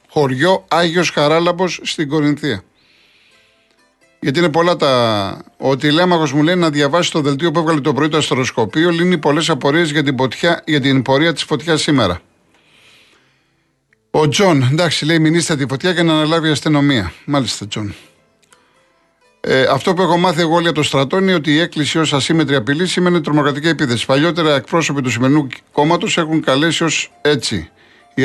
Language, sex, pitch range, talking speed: Greek, male, 140-170 Hz, 160 wpm